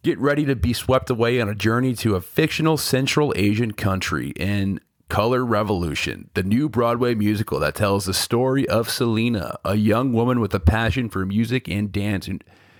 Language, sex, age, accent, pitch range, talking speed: English, male, 30-49, American, 100-125 Hz, 180 wpm